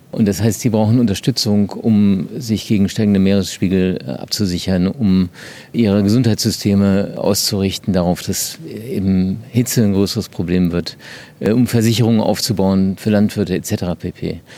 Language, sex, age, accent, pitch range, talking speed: German, male, 50-69, German, 100-120 Hz, 130 wpm